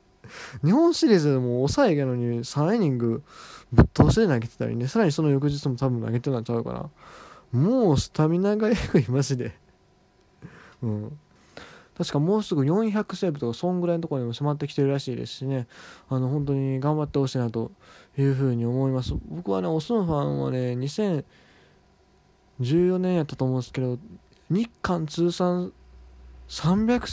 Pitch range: 120-170 Hz